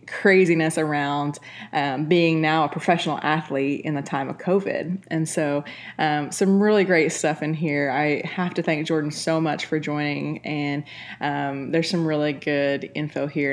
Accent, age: American, 20-39